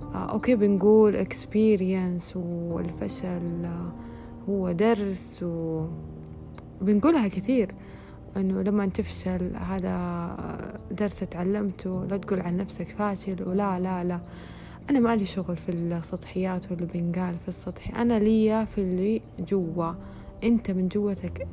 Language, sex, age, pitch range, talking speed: Arabic, female, 20-39, 175-215 Hz, 110 wpm